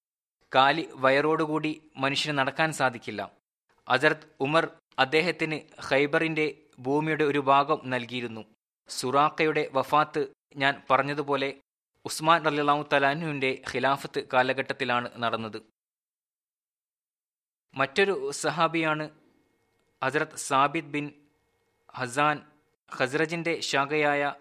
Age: 20-39